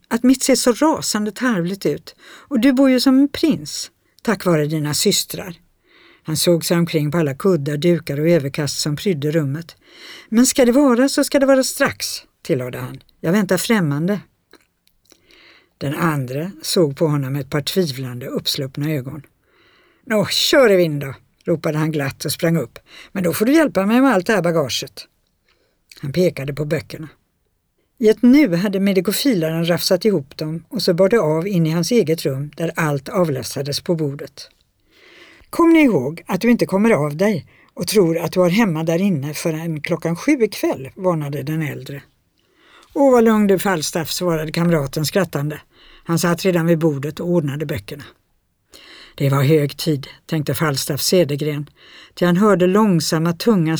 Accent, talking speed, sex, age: native, 175 wpm, female, 60-79